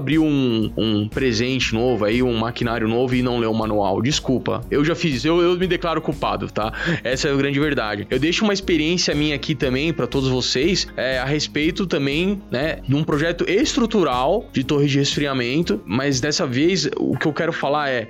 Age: 20-39